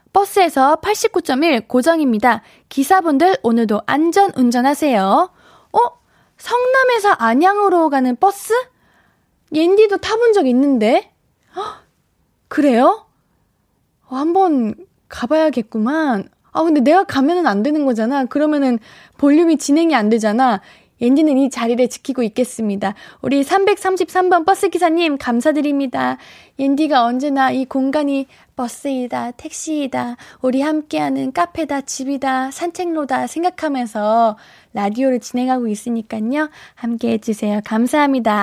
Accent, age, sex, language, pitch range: native, 20-39, female, Korean, 245-360 Hz